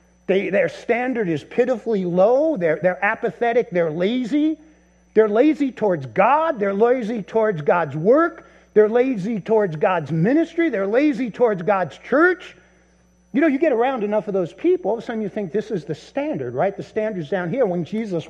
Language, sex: English, male